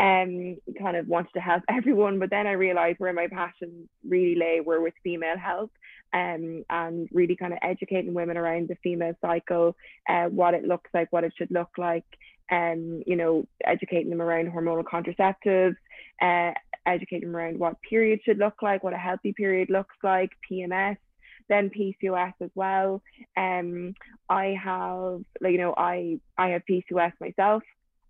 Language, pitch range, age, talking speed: English, 170-185 Hz, 20-39, 170 wpm